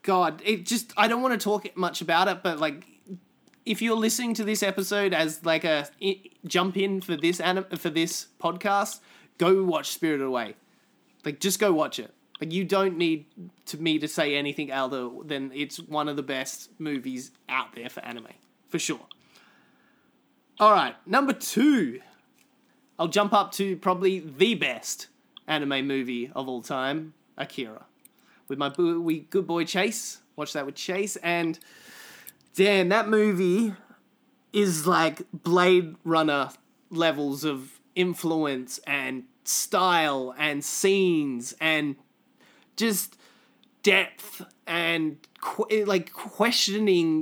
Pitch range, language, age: 155-210 Hz, English, 20-39